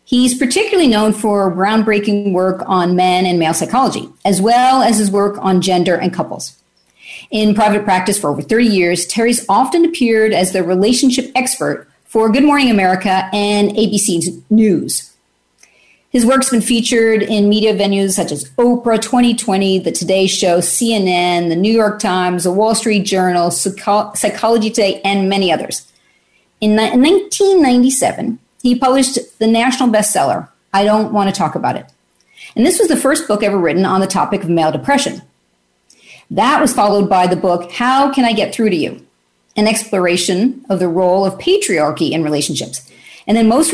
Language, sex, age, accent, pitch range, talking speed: English, female, 40-59, American, 180-235 Hz, 165 wpm